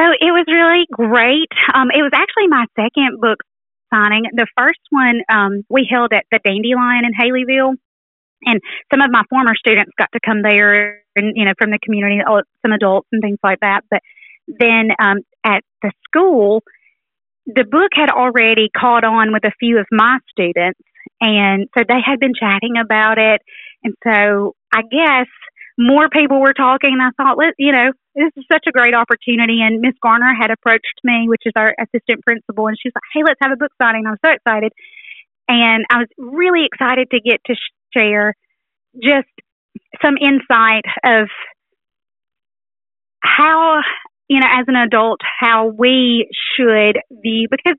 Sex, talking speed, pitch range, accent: female, 175 wpm, 220-275 Hz, American